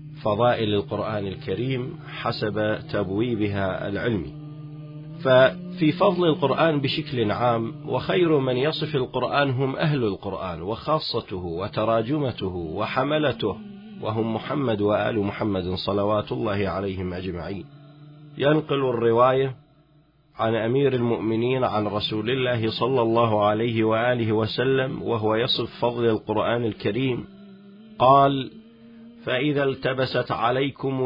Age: 40-59